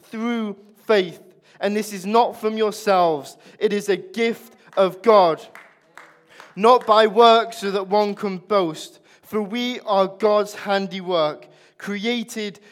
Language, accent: English, British